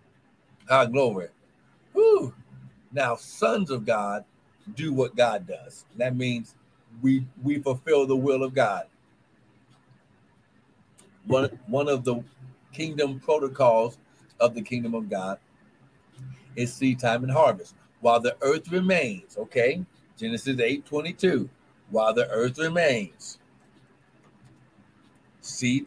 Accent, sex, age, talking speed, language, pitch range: American, male, 60-79, 110 wpm, English, 115-145 Hz